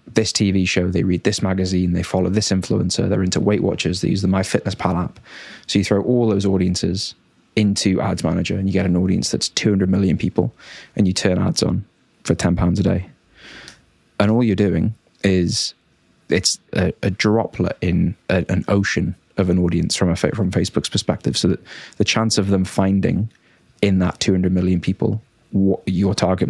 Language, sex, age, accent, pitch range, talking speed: English, male, 20-39, British, 90-105 Hz, 195 wpm